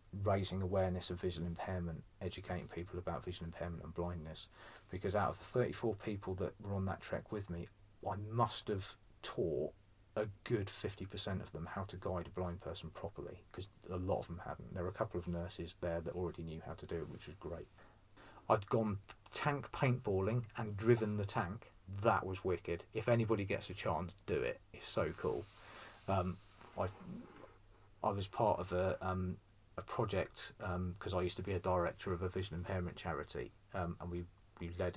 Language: English